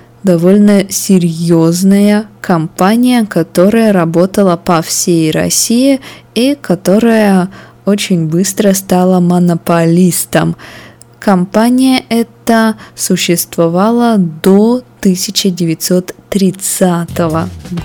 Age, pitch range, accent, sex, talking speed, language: 20-39, 165-205 Hz, native, female, 65 wpm, Russian